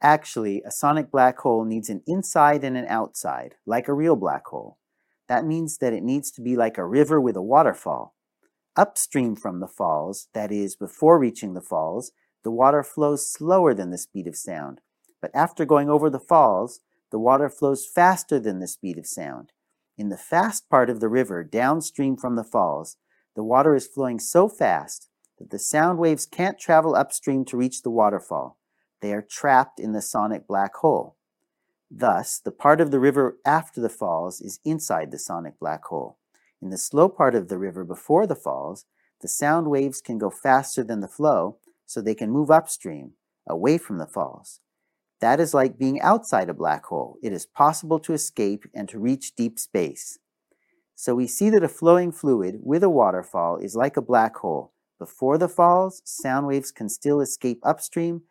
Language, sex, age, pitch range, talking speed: Hebrew, male, 40-59, 115-155 Hz, 190 wpm